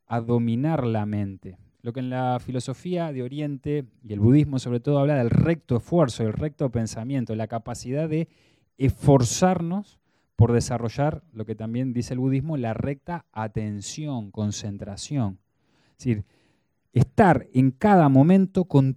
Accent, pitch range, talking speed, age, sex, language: Argentinian, 110-145 Hz, 145 wpm, 20-39, male, Spanish